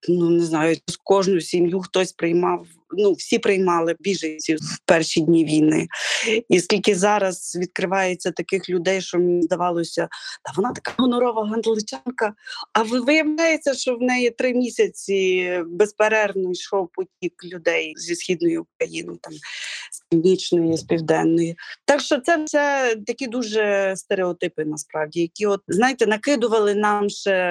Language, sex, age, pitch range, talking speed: Ukrainian, female, 20-39, 175-245 Hz, 135 wpm